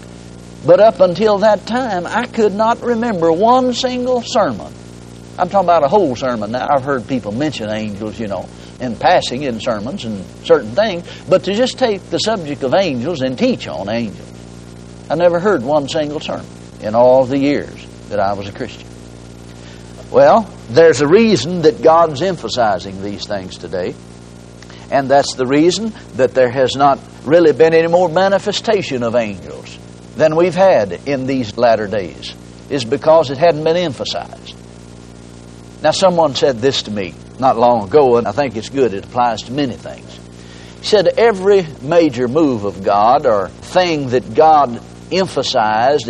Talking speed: 170 wpm